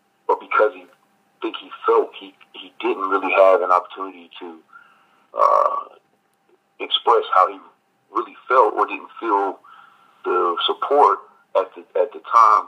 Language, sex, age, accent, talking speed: English, male, 40-59, American, 145 wpm